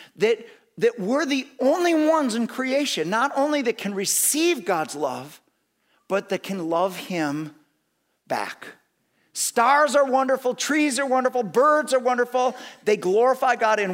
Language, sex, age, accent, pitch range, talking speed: English, male, 50-69, American, 165-255 Hz, 145 wpm